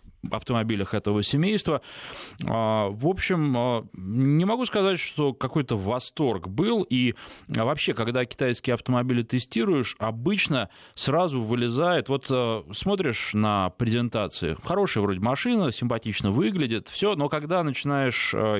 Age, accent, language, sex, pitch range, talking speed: 20-39, native, Russian, male, 105-140 Hz, 110 wpm